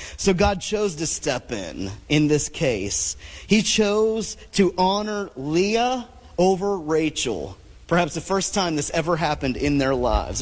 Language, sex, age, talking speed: English, male, 30-49, 150 wpm